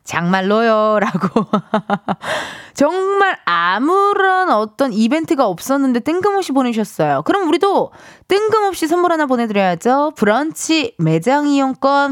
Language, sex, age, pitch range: Korean, female, 20-39, 190-305 Hz